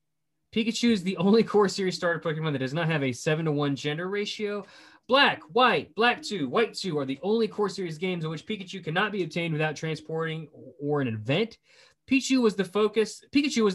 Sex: male